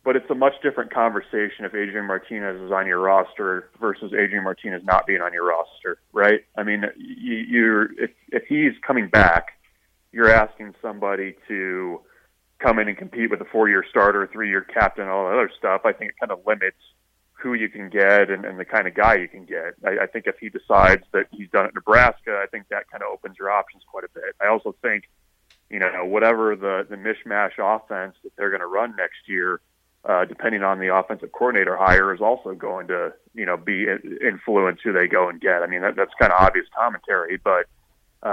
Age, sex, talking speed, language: 30-49, male, 215 wpm, English